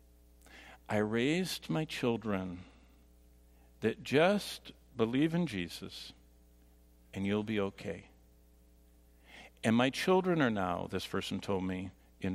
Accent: American